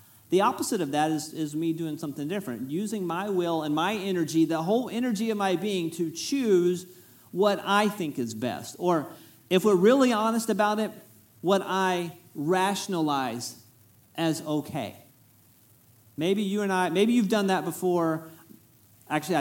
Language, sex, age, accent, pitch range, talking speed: English, male, 40-59, American, 145-205 Hz, 160 wpm